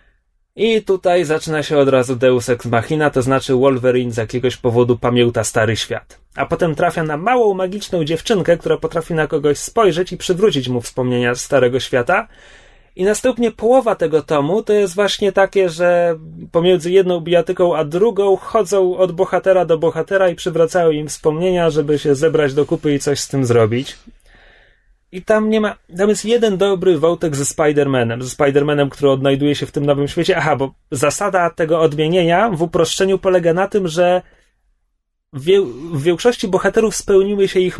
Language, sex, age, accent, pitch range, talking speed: Polish, male, 30-49, native, 145-185 Hz, 170 wpm